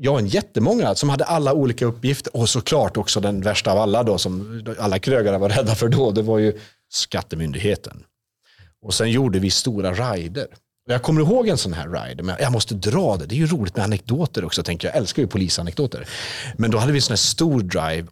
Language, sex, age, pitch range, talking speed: Swedish, male, 30-49, 105-150 Hz, 225 wpm